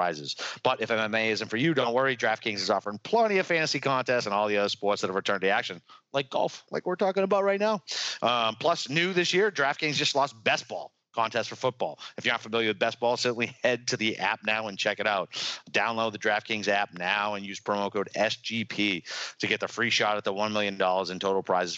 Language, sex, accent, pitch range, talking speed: English, male, American, 95-115 Hz, 235 wpm